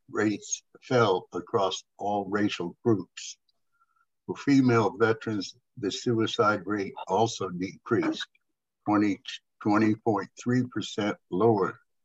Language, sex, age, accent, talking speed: English, male, 60-79, American, 80 wpm